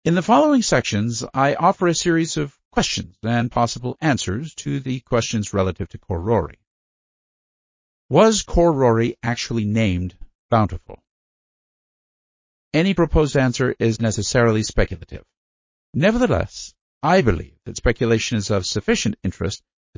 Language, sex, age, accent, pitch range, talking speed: English, male, 50-69, American, 95-125 Hz, 120 wpm